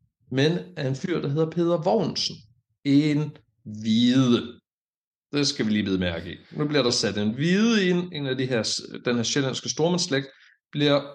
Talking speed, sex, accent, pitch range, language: 180 wpm, male, native, 110-145 Hz, Danish